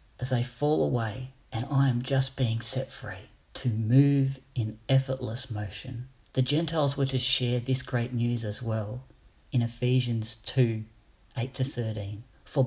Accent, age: Australian, 40-59